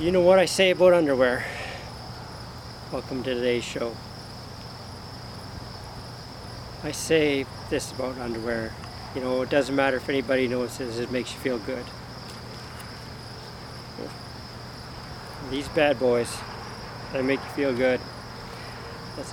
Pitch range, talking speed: 120-135 Hz, 120 wpm